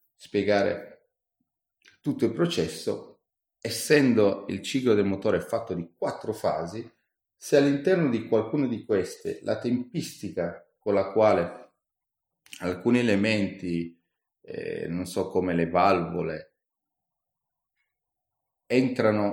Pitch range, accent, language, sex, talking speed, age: 85-105 Hz, native, Italian, male, 100 wpm, 30-49